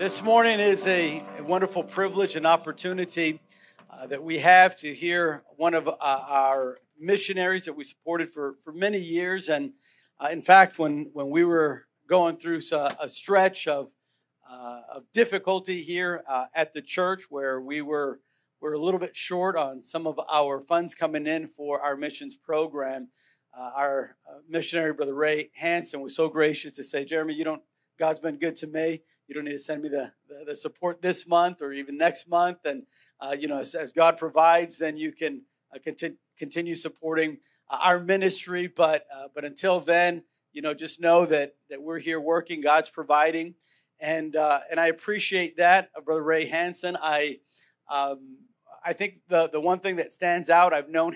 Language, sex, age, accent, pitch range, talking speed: English, male, 50-69, American, 150-180 Hz, 185 wpm